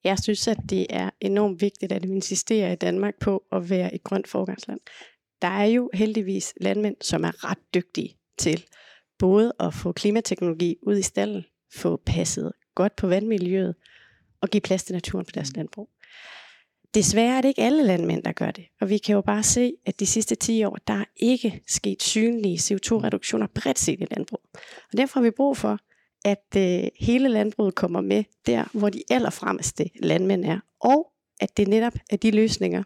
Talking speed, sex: 190 wpm, female